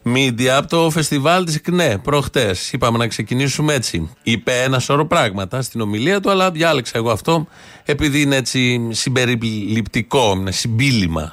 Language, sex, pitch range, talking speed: Greek, male, 115-155 Hz, 145 wpm